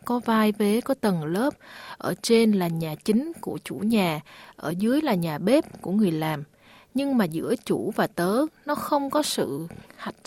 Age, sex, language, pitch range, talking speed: 20-39, female, Vietnamese, 175-240 Hz, 195 wpm